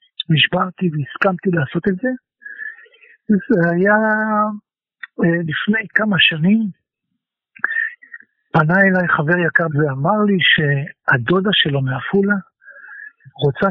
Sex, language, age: male, Hebrew, 60-79